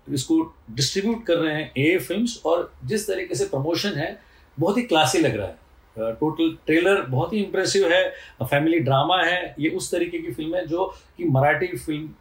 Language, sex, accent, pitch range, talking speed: Hindi, male, native, 145-185 Hz, 185 wpm